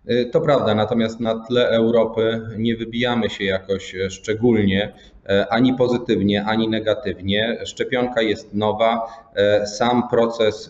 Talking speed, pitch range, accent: 110 wpm, 105-120 Hz, native